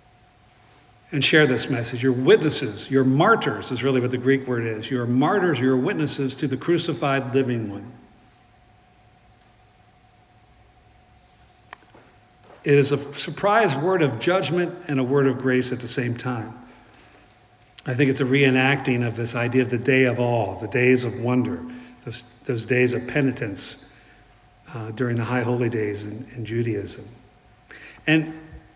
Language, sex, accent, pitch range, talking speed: English, male, American, 120-145 Hz, 150 wpm